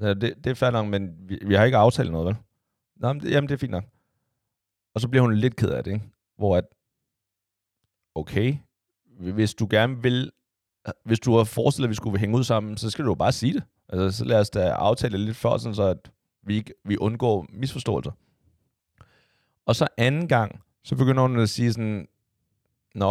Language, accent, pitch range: Danish, native, 100-125 Hz